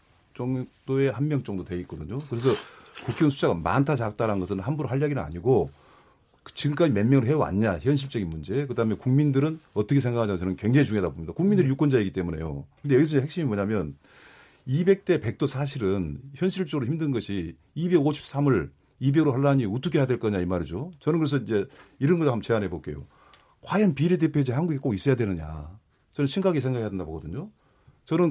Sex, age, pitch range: male, 40-59, 105-150 Hz